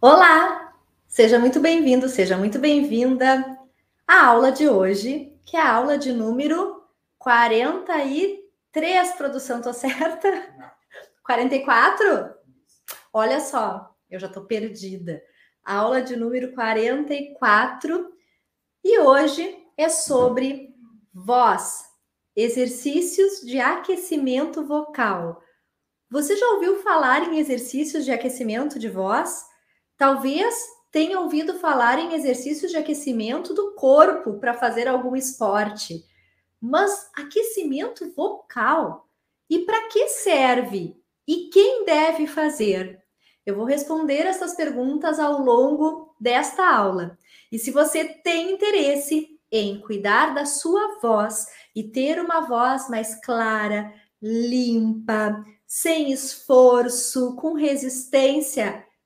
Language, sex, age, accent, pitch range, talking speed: Portuguese, female, 20-39, Brazilian, 235-325 Hz, 110 wpm